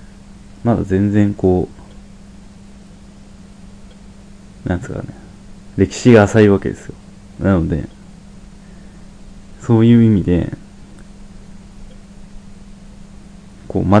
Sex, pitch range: male, 90-110 Hz